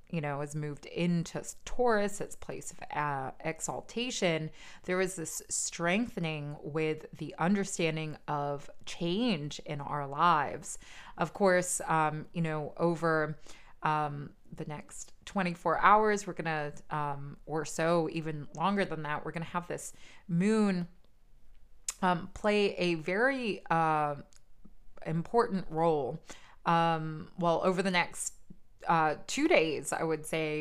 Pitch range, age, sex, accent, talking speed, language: 155-175 Hz, 20-39, female, American, 135 wpm, English